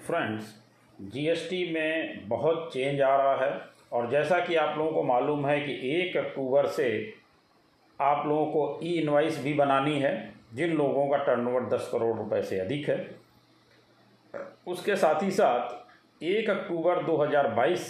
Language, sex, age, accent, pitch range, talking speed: Hindi, male, 40-59, native, 145-180 Hz, 155 wpm